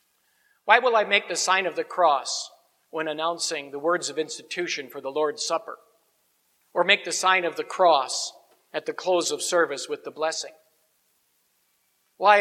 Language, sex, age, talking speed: English, male, 50-69, 170 wpm